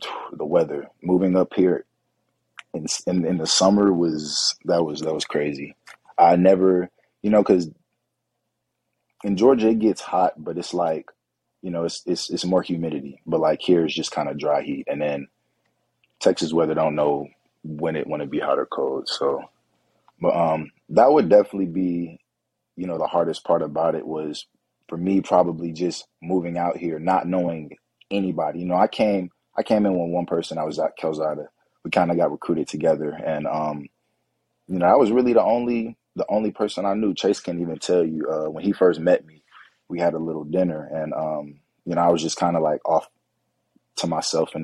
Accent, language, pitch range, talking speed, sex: American, English, 80-95 Hz, 200 wpm, male